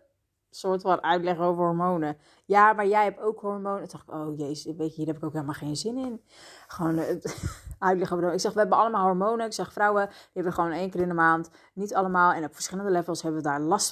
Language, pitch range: Dutch, 160-190 Hz